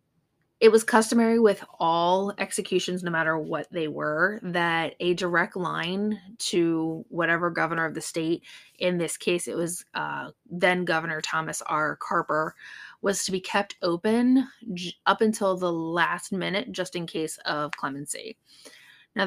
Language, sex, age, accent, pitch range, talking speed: English, female, 20-39, American, 175-215 Hz, 150 wpm